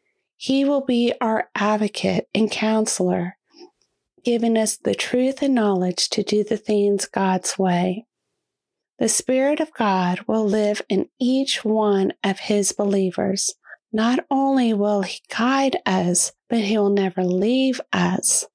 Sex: female